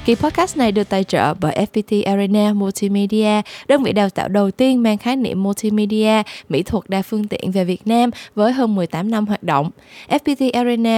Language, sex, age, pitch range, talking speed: Vietnamese, female, 20-39, 195-235 Hz, 195 wpm